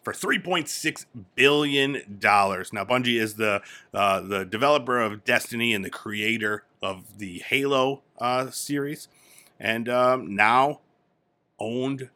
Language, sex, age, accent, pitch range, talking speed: English, male, 30-49, American, 100-130 Hz, 120 wpm